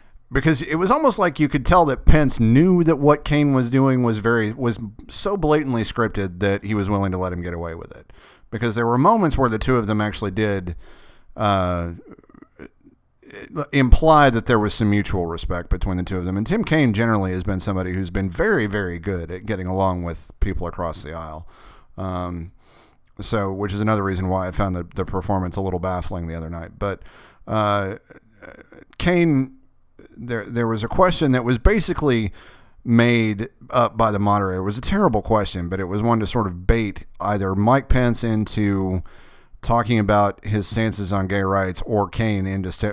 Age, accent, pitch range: 30-49, American, 90-115 Hz